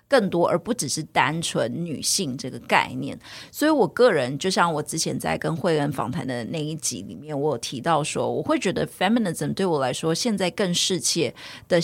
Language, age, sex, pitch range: Chinese, 30-49, female, 155-200 Hz